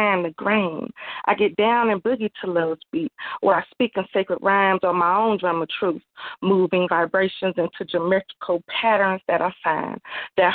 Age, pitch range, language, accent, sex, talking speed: 30-49, 190-230 Hz, English, American, female, 175 wpm